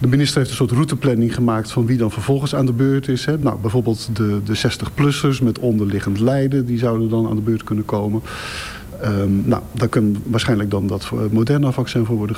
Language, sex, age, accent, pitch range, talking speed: Dutch, male, 50-69, Dutch, 110-125 Hz, 210 wpm